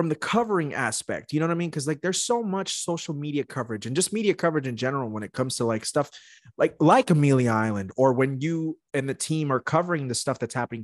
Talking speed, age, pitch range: 245 wpm, 30-49, 120-160 Hz